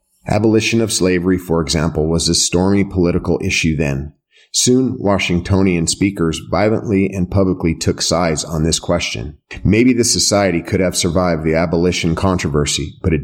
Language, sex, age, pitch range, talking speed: English, male, 30-49, 85-95 Hz, 150 wpm